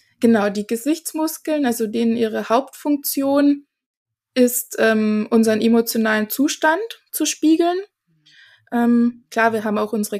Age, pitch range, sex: 20-39, 225-285 Hz, female